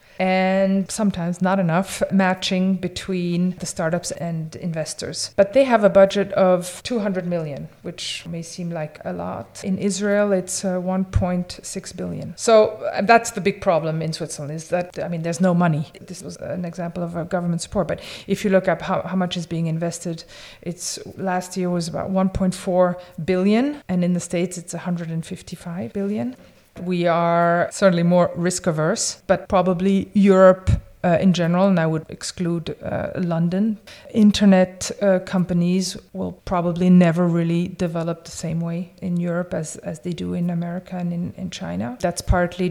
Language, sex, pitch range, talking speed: English, female, 175-190 Hz, 165 wpm